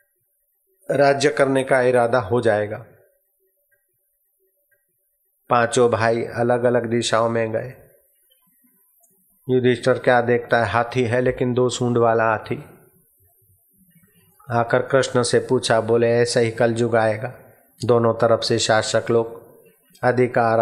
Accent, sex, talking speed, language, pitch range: native, male, 115 wpm, Hindi, 115-135 Hz